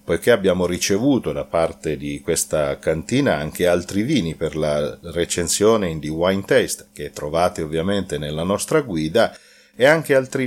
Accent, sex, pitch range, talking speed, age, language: native, male, 85-105 Hz, 155 wpm, 40-59, Italian